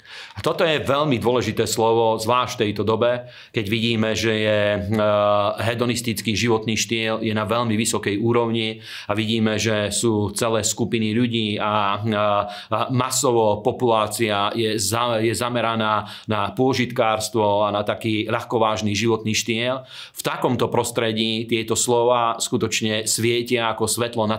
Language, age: Slovak, 40-59